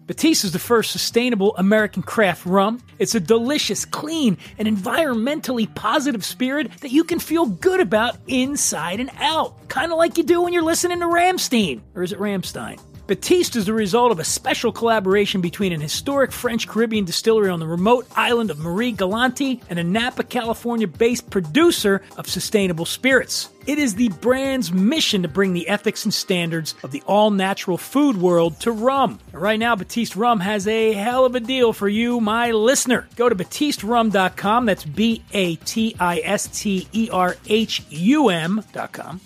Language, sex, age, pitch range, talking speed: English, male, 40-59, 195-255 Hz, 160 wpm